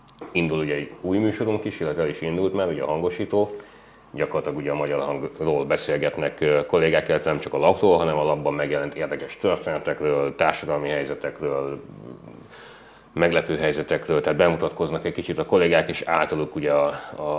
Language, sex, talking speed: Hungarian, male, 160 wpm